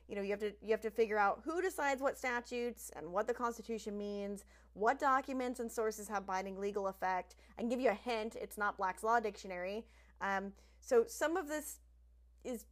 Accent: American